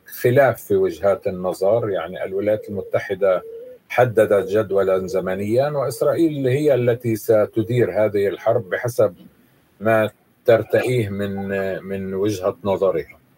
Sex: male